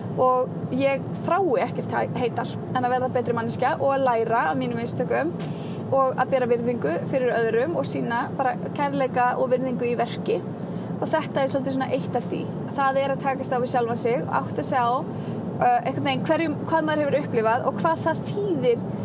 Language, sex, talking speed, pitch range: English, female, 160 wpm, 180-270 Hz